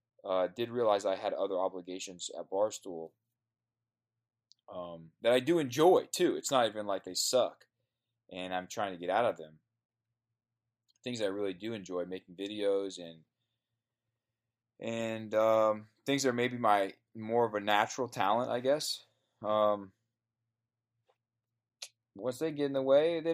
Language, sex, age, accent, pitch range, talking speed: English, male, 20-39, American, 105-120 Hz, 150 wpm